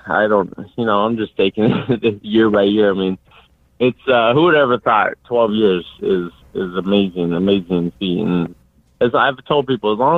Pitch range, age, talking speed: 90-115 Hz, 30-49, 195 wpm